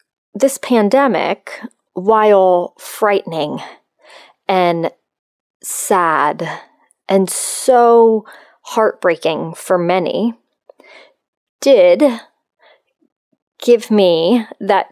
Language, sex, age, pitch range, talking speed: English, female, 30-49, 180-255 Hz, 60 wpm